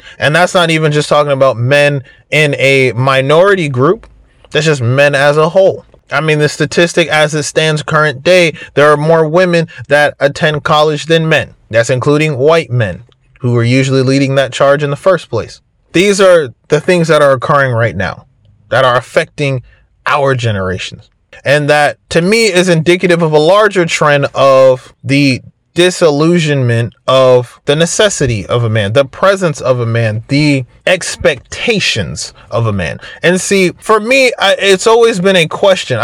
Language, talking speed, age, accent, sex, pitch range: English, 170 wpm, 30-49, American, male, 135-170 Hz